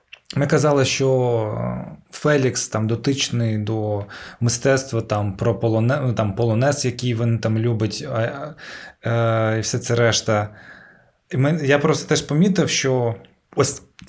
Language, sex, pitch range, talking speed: Ukrainian, male, 115-150 Hz, 135 wpm